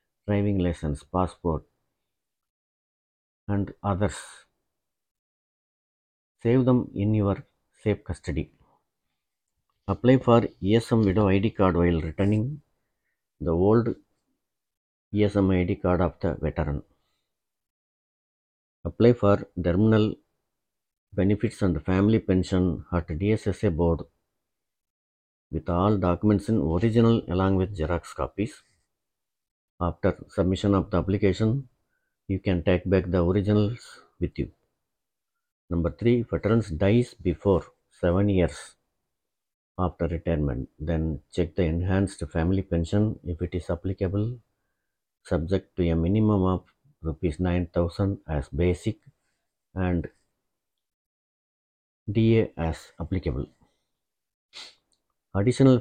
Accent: native